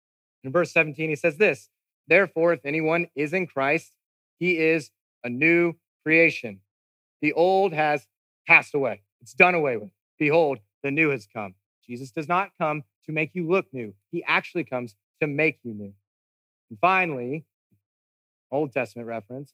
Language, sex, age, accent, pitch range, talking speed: English, male, 30-49, American, 110-150 Hz, 160 wpm